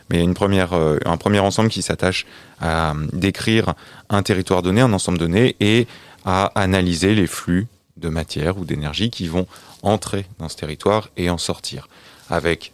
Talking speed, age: 165 wpm, 30-49